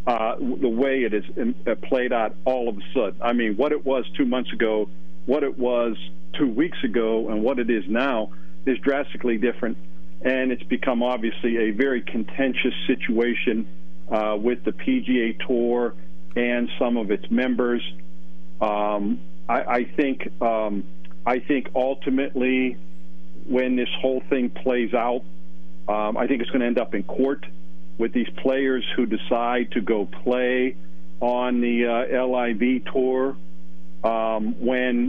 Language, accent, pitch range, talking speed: English, American, 105-130 Hz, 155 wpm